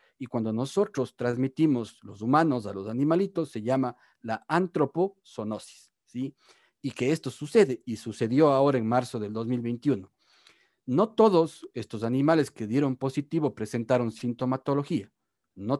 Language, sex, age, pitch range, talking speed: Spanish, male, 40-59, 115-150 Hz, 135 wpm